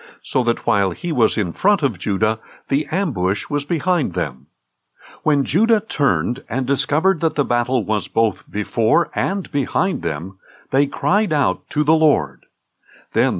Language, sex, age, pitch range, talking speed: English, male, 60-79, 115-165 Hz, 155 wpm